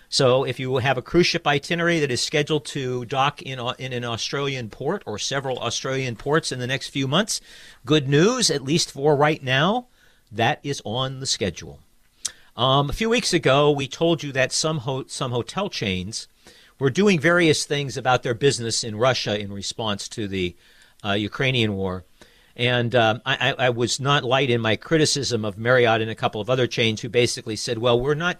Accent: American